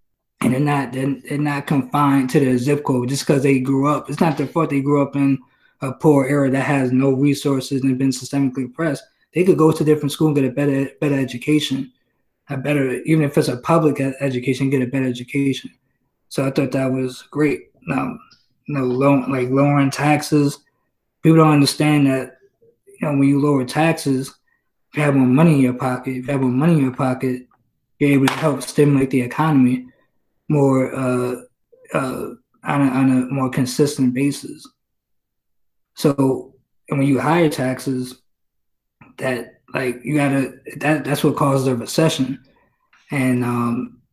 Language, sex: English, male